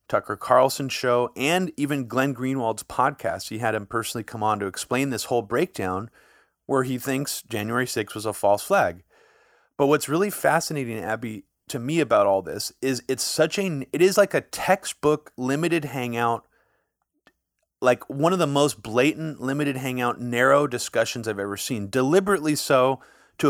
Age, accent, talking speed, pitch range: 30-49, American, 165 wpm, 120-155 Hz